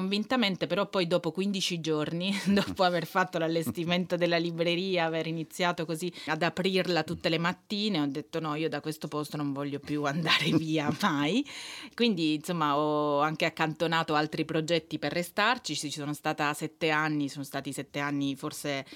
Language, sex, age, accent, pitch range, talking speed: Italian, female, 30-49, native, 150-175 Hz, 160 wpm